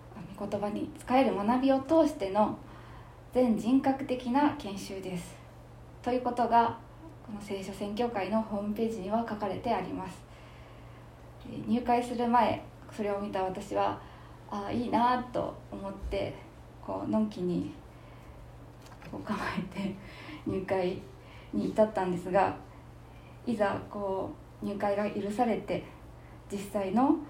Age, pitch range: 20-39, 190-240 Hz